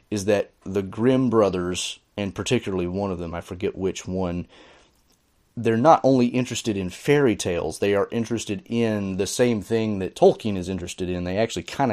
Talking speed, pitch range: 180 wpm, 90-110 Hz